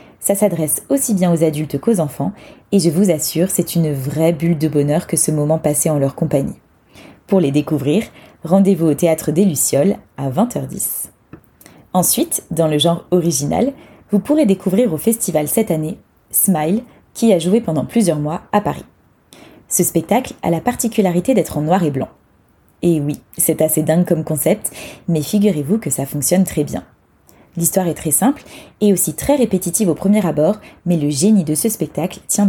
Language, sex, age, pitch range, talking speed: French, female, 20-39, 155-200 Hz, 180 wpm